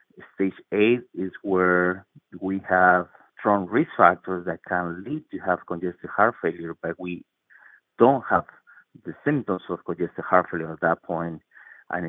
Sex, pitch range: male, 85-95 Hz